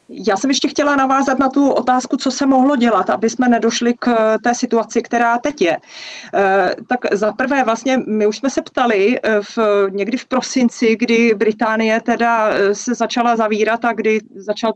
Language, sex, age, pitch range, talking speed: Czech, female, 30-49, 210-245 Hz, 170 wpm